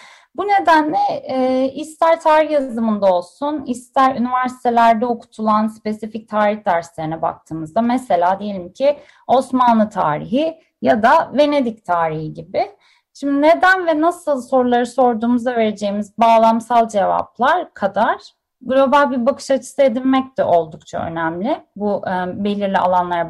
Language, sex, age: Turkish, female, 30-49